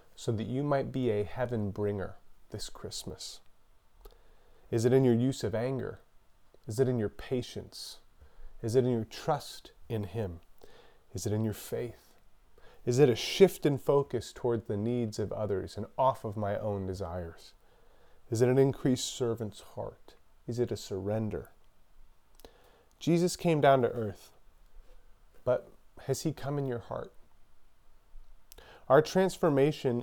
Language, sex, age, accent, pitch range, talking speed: English, male, 30-49, American, 110-140 Hz, 150 wpm